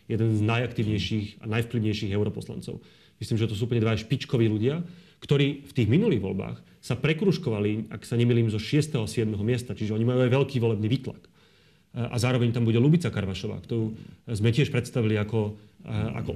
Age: 30-49